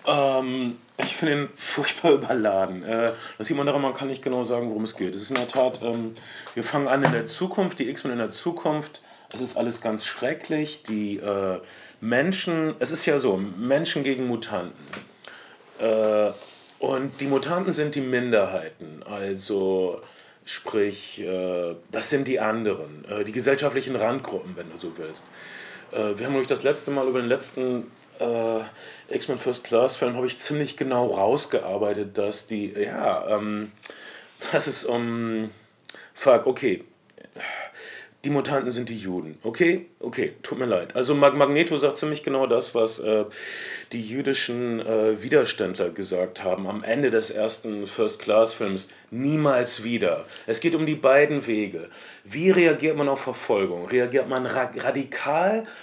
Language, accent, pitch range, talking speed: German, German, 110-140 Hz, 155 wpm